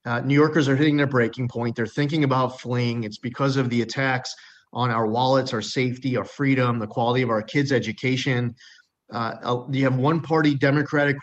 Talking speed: 185 wpm